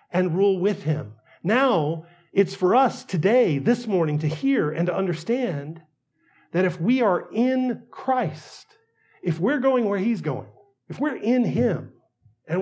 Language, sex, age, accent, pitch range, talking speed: English, male, 40-59, American, 160-230 Hz, 155 wpm